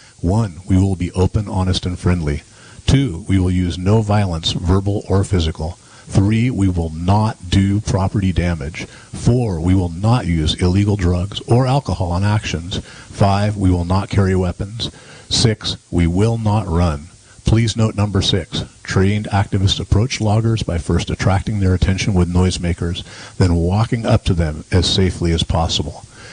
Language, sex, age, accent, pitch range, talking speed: English, male, 40-59, American, 90-110 Hz, 160 wpm